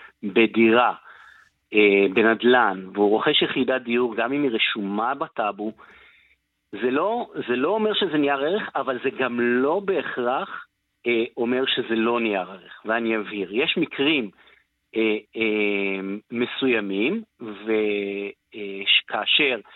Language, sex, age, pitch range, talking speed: Hebrew, male, 50-69, 110-135 Hz, 120 wpm